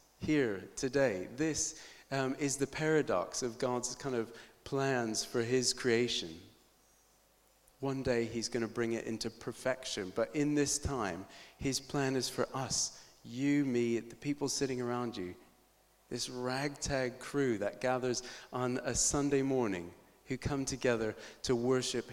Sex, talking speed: male, 145 wpm